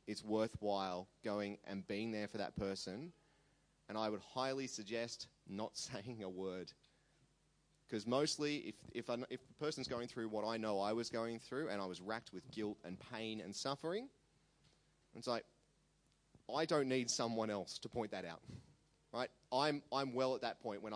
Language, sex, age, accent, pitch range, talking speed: English, male, 30-49, Australian, 105-125 Hz, 180 wpm